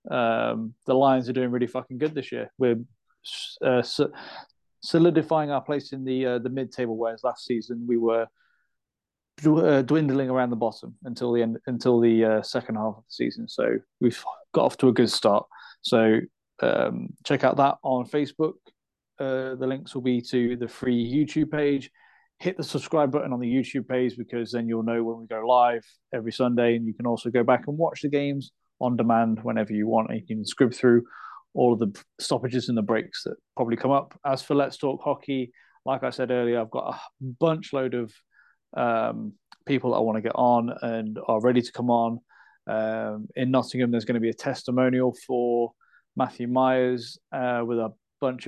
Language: English